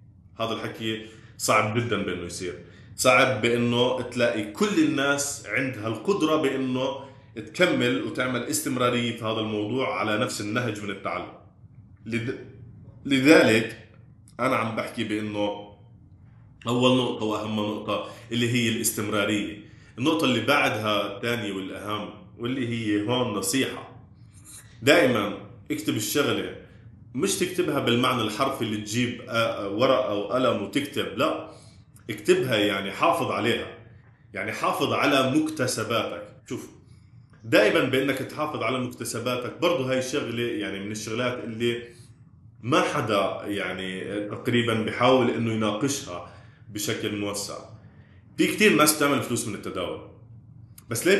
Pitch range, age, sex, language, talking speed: 105-125 Hz, 20-39, male, Arabic, 115 wpm